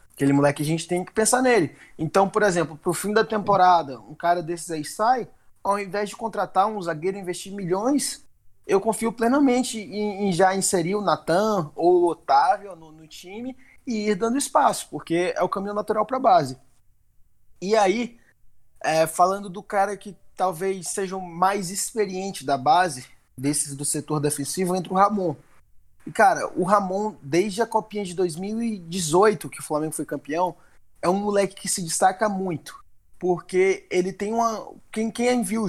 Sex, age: male, 20-39